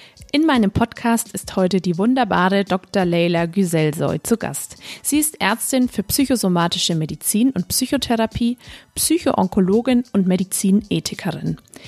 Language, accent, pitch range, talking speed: German, German, 175-235 Hz, 115 wpm